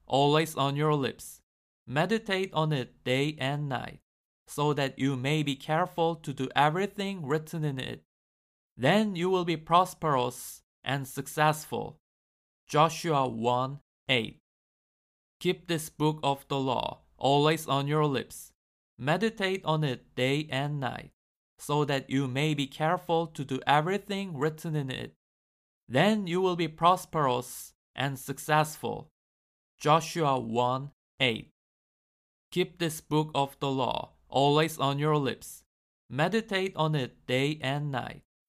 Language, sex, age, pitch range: Korean, male, 20-39, 130-160 Hz